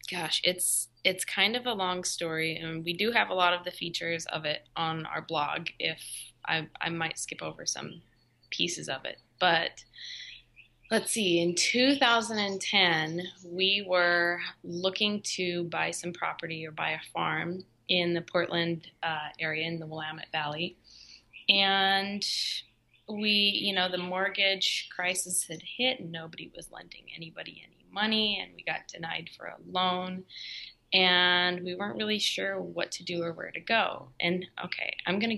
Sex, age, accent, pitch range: female, 20-39, American, 165-195 Hz